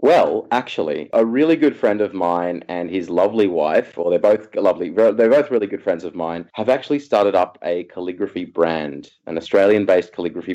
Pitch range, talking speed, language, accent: 95-125 Hz, 195 wpm, English, Australian